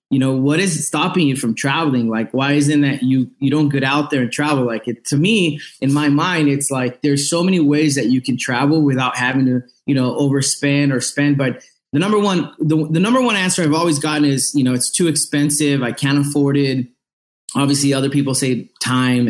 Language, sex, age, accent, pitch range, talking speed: English, male, 20-39, American, 130-150 Hz, 210 wpm